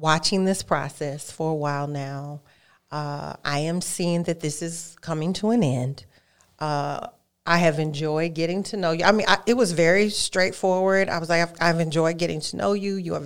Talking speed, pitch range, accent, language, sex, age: 205 wpm, 155-180 Hz, American, English, female, 40-59